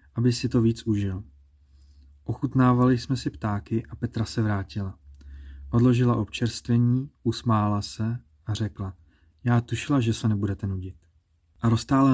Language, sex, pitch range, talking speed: Czech, male, 95-120 Hz, 135 wpm